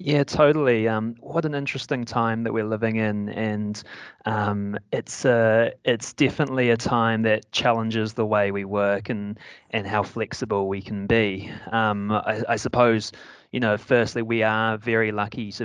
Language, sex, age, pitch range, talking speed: English, male, 20-39, 100-115 Hz, 170 wpm